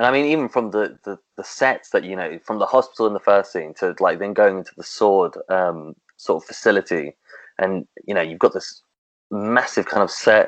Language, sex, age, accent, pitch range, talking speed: English, male, 20-39, British, 95-110 Hz, 230 wpm